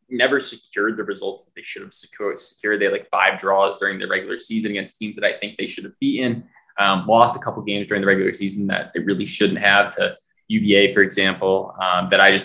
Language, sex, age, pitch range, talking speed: English, male, 20-39, 105-130 Hz, 240 wpm